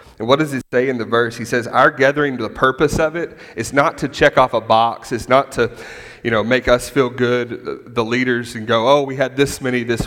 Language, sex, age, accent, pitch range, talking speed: English, male, 30-49, American, 120-145 Hz, 250 wpm